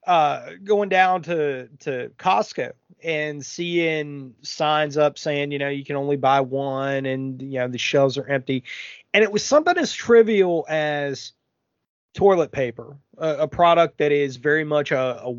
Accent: American